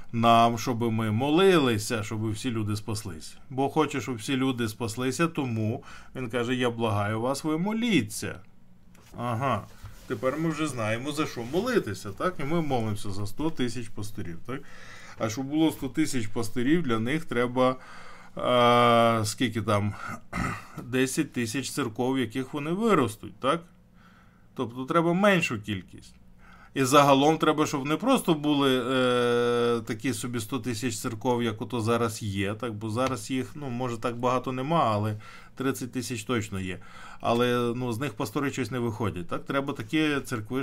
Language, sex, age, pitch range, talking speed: Ukrainian, male, 20-39, 110-135 Hz, 160 wpm